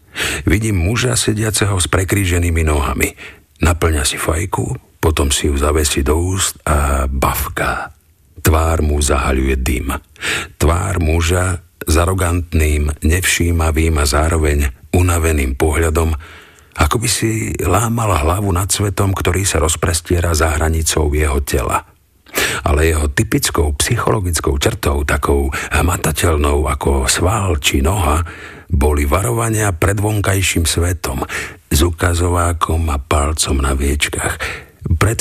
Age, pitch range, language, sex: 50-69, 75-95 Hz, Slovak, male